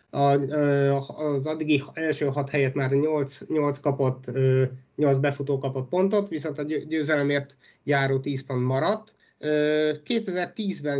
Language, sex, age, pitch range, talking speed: Hungarian, male, 30-49, 140-160 Hz, 115 wpm